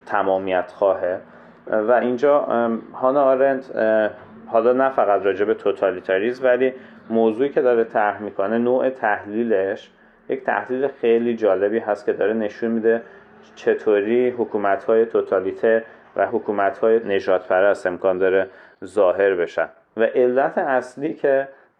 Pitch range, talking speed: 100-130 Hz, 115 wpm